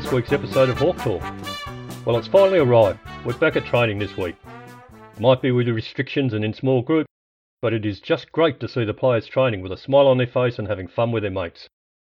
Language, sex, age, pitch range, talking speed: English, male, 50-69, 115-150 Hz, 230 wpm